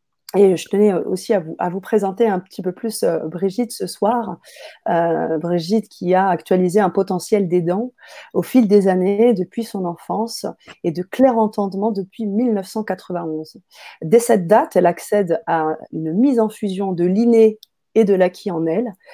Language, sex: French, female